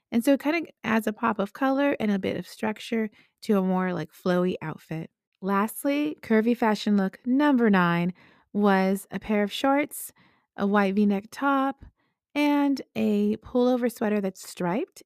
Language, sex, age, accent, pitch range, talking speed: English, female, 30-49, American, 180-240 Hz, 165 wpm